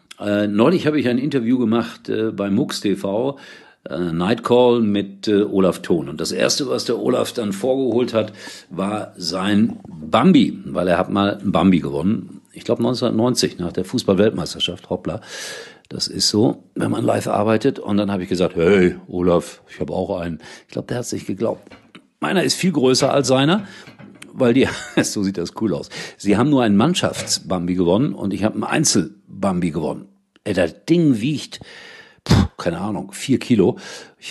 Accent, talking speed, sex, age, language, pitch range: German, 180 wpm, male, 50-69, German, 95-130 Hz